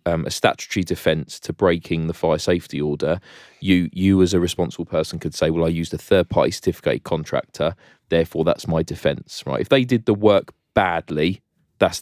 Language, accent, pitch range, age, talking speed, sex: English, British, 85-105 Hz, 20-39, 185 wpm, male